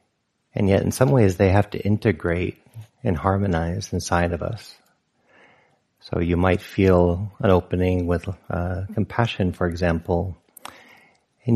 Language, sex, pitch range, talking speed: English, male, 90-105 Hz, 135 wpm